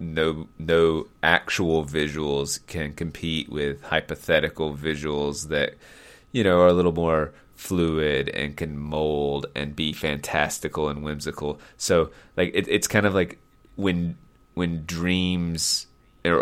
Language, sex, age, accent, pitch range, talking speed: English, male, 30-49, American, 75-90 Hz, 130 wpm